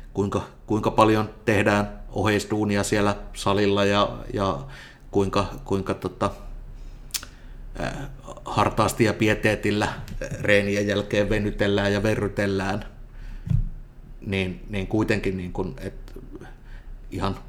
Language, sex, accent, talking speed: Finnish, male, native, 95 wpm